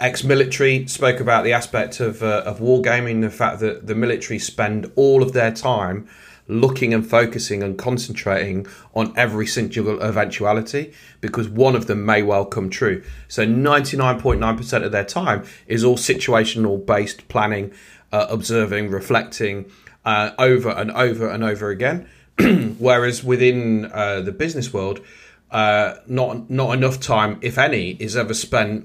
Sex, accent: male, British